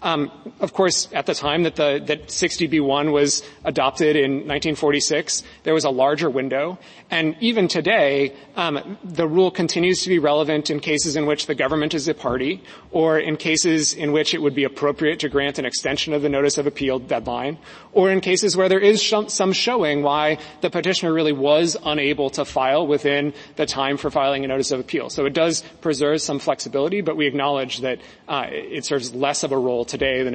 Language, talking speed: English, 200 wpm